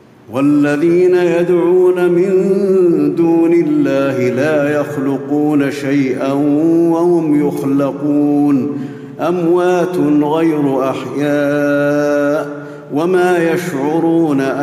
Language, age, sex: Arabic, 50-69, male